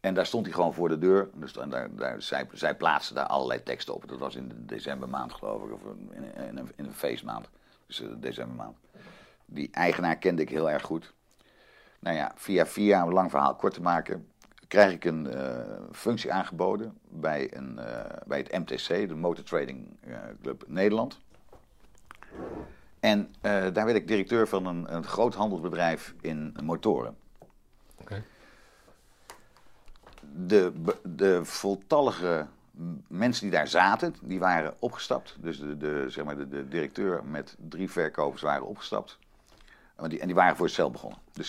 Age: 50-69